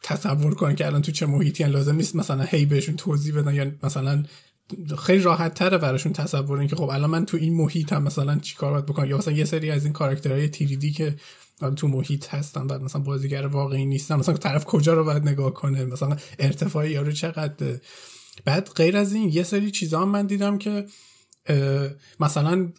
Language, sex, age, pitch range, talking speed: Persian, male, 30-49, 145-175 Hz, 195 wpm